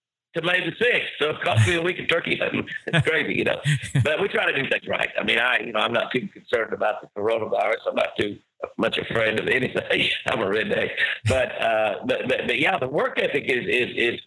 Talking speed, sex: 245 wpm, male